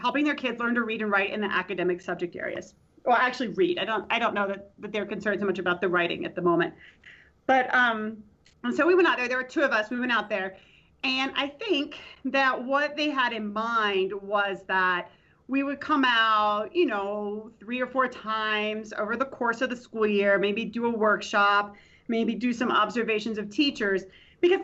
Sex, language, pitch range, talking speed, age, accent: female, English, 210-265 Hz, 215 wpm, 40-59, American